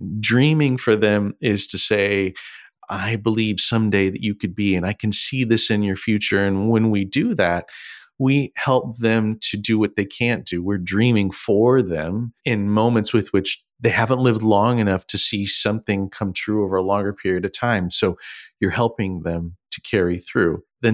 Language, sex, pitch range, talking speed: English, male, 95-115 Hz, 190 wpm